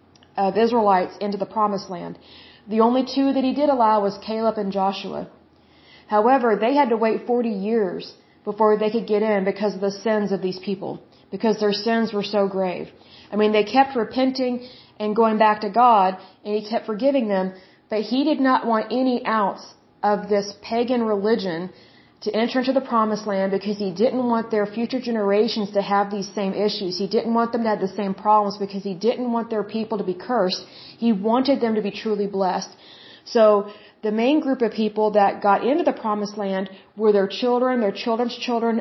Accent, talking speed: American, 200 wpm